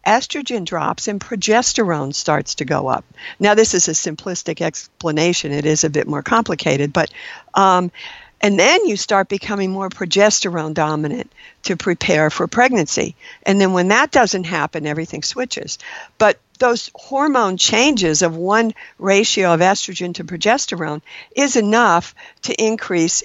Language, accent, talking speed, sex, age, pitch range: English, American, 145 wpm, female, 60-79, 165-210 Hz